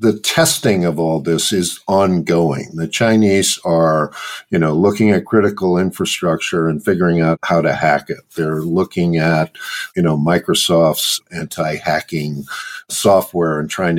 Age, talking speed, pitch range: 50-69, 140 wpm, 85-115 Hz